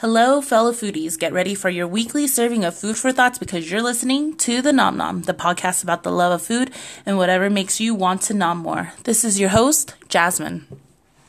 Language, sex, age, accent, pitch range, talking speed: English, female, 20-39, American, 185-240 Hz, 215 wpm